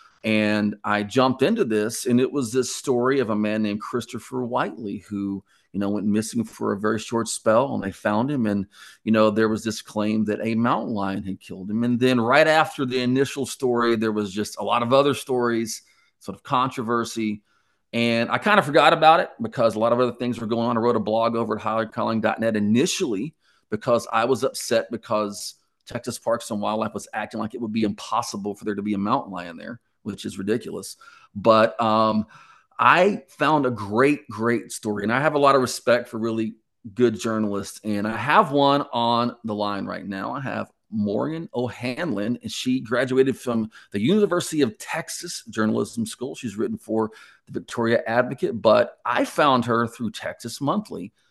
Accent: American